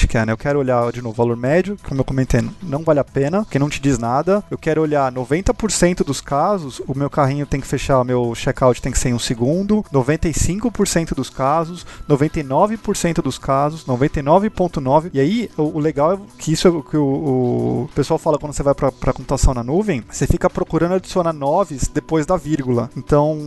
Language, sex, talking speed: Portuguese, male, 210 wpm